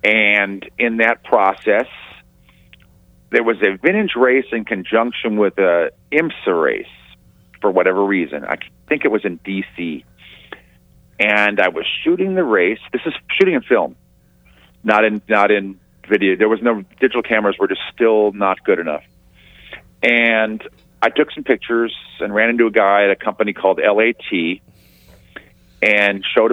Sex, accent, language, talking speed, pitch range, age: male, American, English, 155 wpm, 95-115 Hz, 40-59